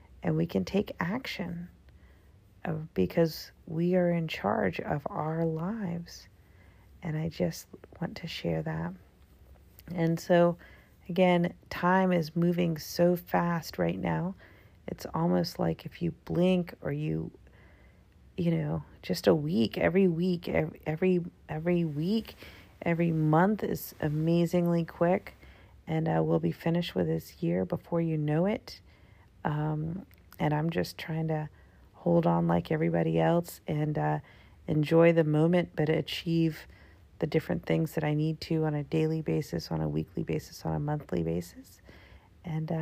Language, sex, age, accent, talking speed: English, female, 40-59, American, 145 wpm